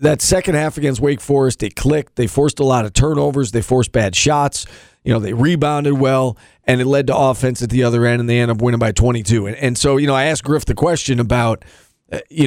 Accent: American